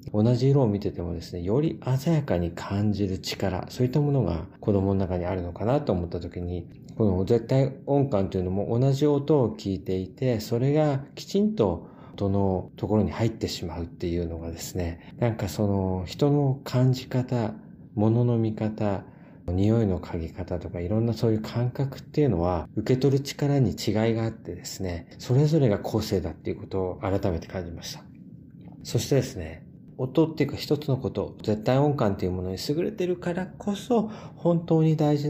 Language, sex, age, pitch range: Japanese, male, 40-59, 90-140 Hz